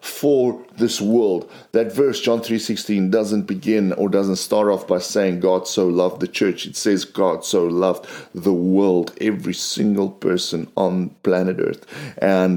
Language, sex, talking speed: English, male, 165 wpm